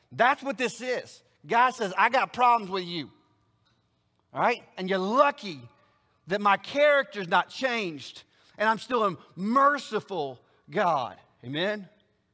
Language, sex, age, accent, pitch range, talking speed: English, male, 40-59, American, 150-210 Hz, 135 wpm